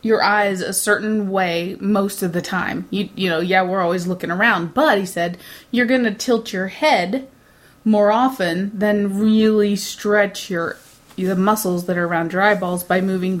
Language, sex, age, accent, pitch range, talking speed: English, female, 30-49, American, 180-215 Hz, 185 wpm